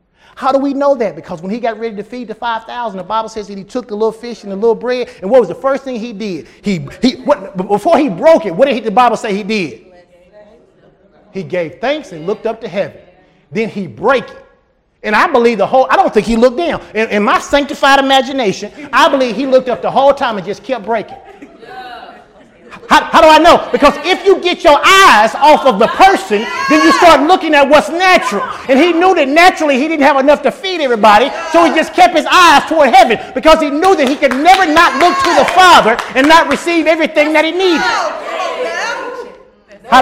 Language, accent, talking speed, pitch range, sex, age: English, American, 230 wpm, 235-345 Hz, male, 30-49